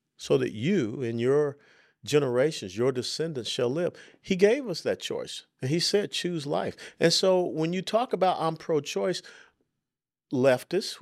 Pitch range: 115-170 Hz